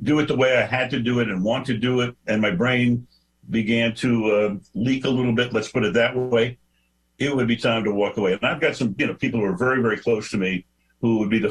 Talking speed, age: 280 wpm, 60-79